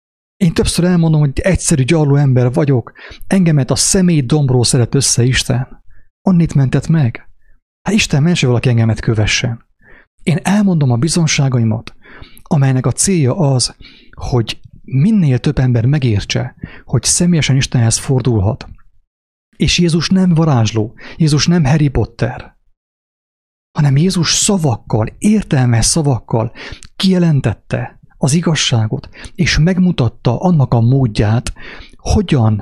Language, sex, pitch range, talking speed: English, male, 120-165 Hz, 115 wpm